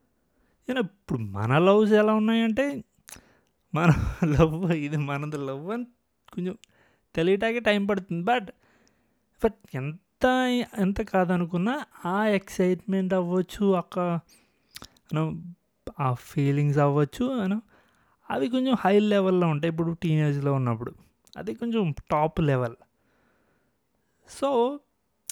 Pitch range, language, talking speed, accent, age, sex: 145-205 Hz, Telugu, 100 wpm, native, 20-39, male